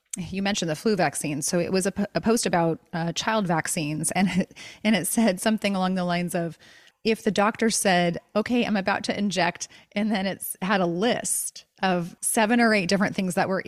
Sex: female